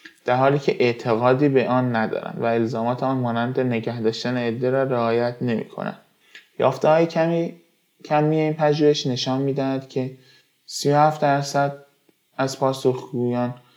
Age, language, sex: 20-39, Persian, male